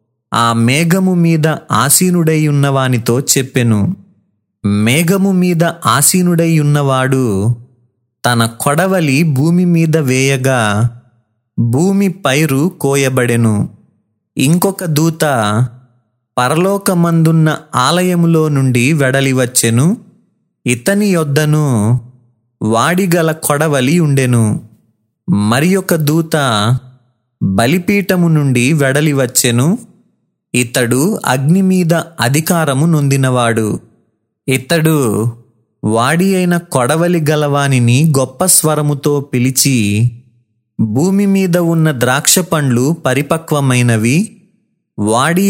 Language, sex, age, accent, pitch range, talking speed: Telugu, male, 20-39, native, 120-165 Hz, 70 wpm